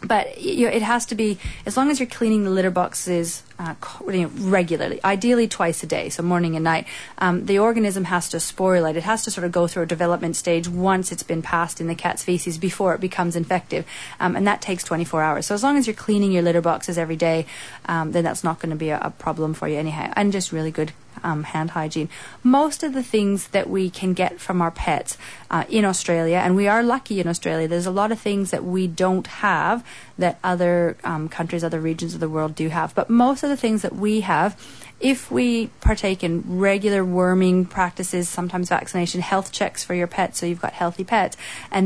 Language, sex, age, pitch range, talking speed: English, female, 30-49, 170-195 Hz, 225 wpm